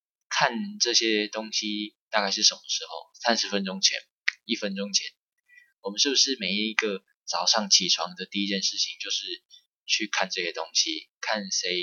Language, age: Chinese, 20-39